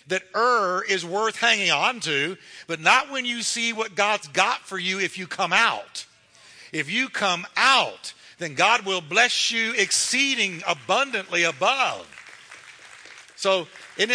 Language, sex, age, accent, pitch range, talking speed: English, male, 50-69, American, 145-210 Hz, 150 wpm